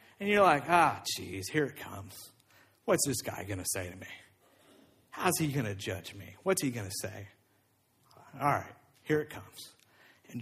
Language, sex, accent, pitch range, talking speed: English, male, American, 105-135 Hz, 190 wpm